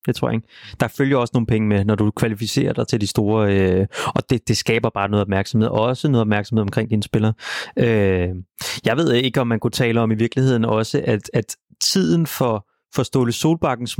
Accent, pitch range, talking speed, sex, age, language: native, 115-145 Hz, 210 wpm, male, 30-49, Danish